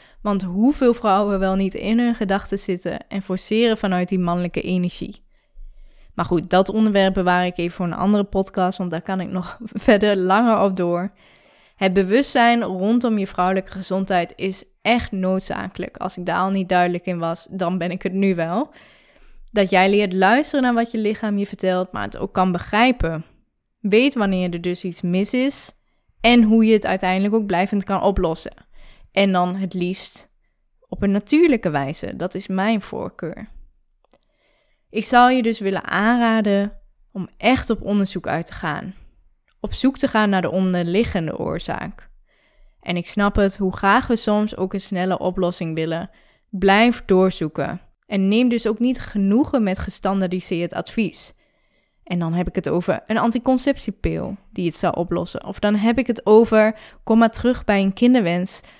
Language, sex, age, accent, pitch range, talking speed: Dutch, female, 10-29, Dutch, 185-220 Hz, 175 wpm